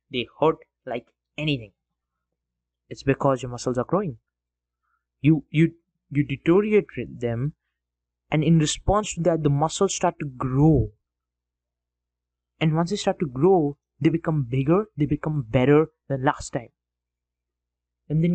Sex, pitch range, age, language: male, 120-160 Hz, 20-39, English